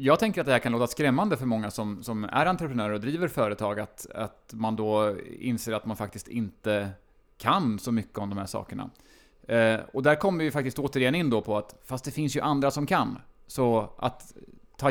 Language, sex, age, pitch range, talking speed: Swedish, male, 20-39, 105-125 Hz, 215 wpm